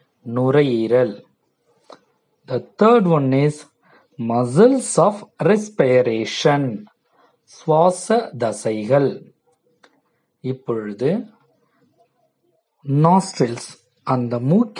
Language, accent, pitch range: Tamil, native, 125-185 Hz